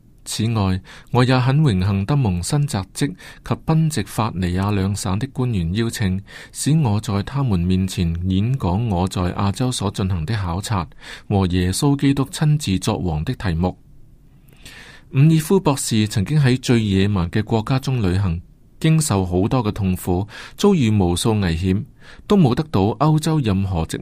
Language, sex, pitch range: Chinese, male, 95-135 Hz